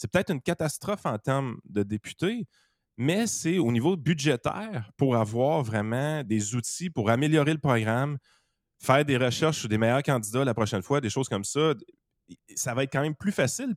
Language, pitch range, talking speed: French, 105-150 Hz, 185 wpm